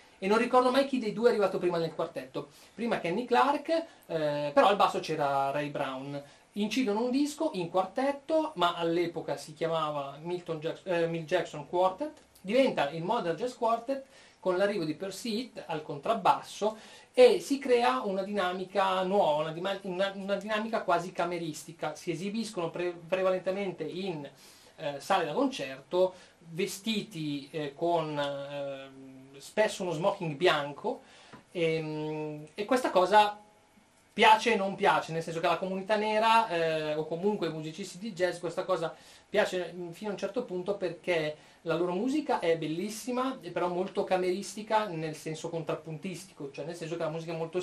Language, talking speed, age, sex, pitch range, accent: Italian, 160 wpm, 30-49, male, 160-210 Hz, native